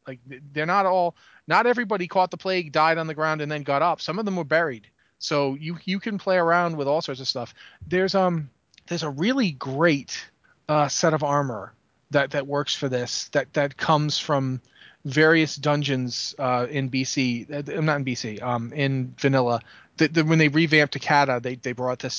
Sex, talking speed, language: male, 200 wpm, English